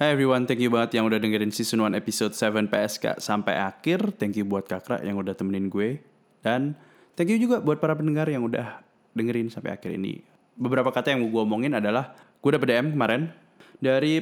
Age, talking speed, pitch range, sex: 20-39, 200 wpm, 105-140 Hz, male